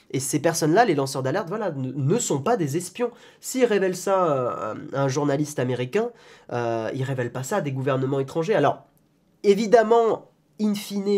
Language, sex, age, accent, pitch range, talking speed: French, male, 20-39, French, 130-170 Hz, 175 wpm